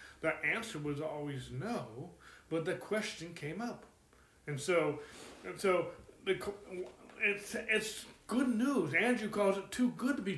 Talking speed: 150 wpm